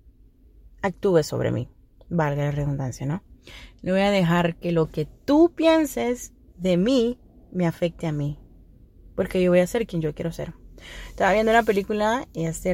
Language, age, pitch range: English, 30-49, 160-205 Hz